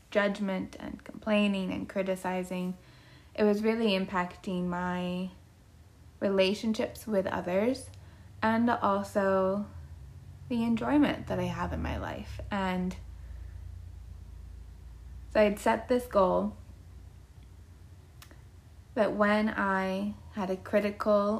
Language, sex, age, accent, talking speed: English, female, 20-39, American, 100 wpm